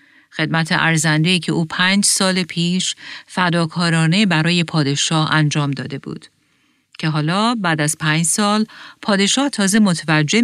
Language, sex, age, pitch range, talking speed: Persian, female, 40-59, 155-205 Hz, 125 wpm